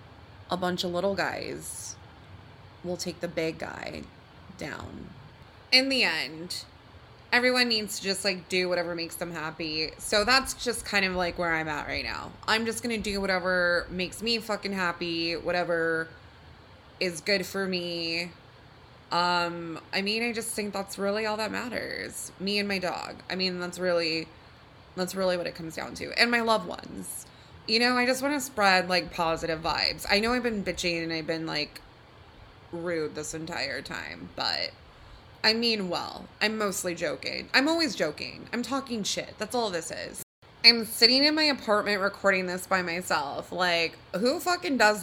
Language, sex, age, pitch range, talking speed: English, female, 20-39, 165-215 Hz, 175 wpm